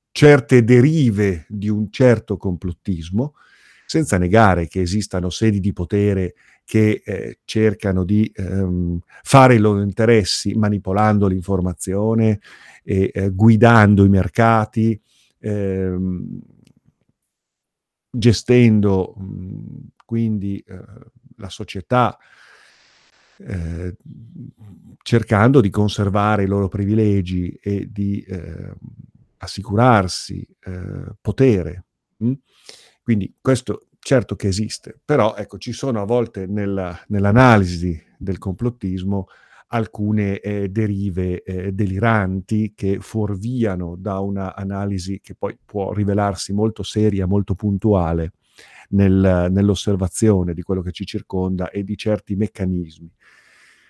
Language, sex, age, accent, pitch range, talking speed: Italian, male, 50-69, native, 95-110 Hz, 100 wpm